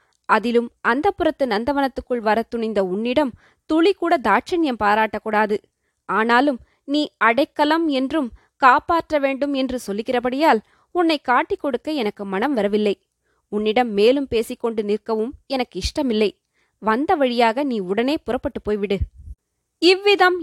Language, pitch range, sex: Tamil, 225-305 Hz, female